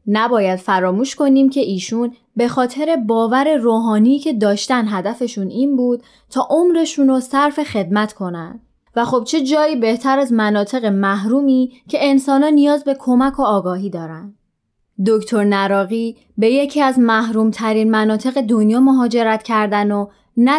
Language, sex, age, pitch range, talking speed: Persian, female, 20-39, 210-255 Hz, 140 wpm